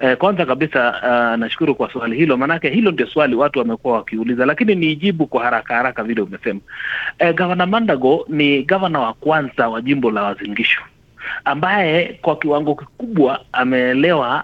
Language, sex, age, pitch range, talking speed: Swahili, male, 30-49, 125-165 Hz, 150 wpm